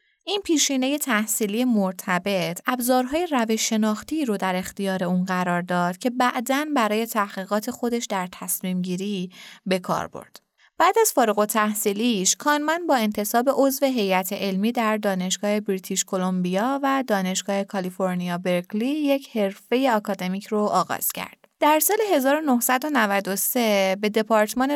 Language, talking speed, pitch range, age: Persian, 130 wpm, 195-255 Hz, 20-39